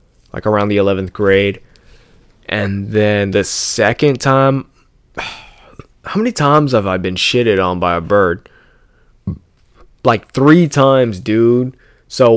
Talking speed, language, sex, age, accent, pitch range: 125 wpm, English, male, 20-39, American, 100-130 Hz